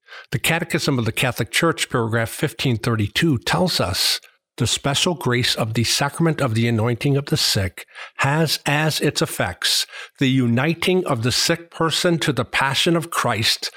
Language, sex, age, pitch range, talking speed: English, male, 50-69, 120-145 Hz, 160 wpm